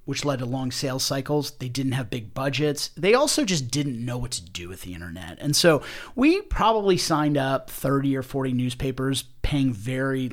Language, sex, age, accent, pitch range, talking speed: English, male, 30-49, American, 120-155 Hz, 200 wpm